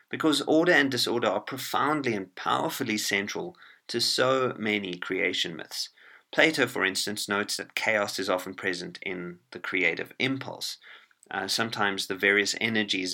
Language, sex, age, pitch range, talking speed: English, male, 30-49, 95-110 Hz, 145 wpm